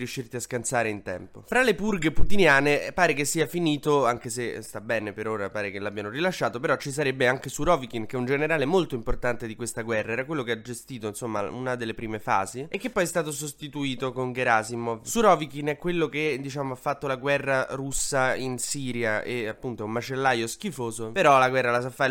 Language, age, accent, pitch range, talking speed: Italian, 20-39, native, 115-150 Hz, 215 wpm